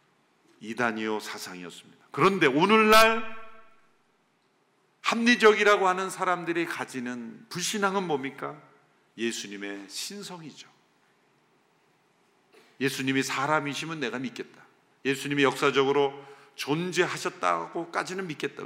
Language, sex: Korean, male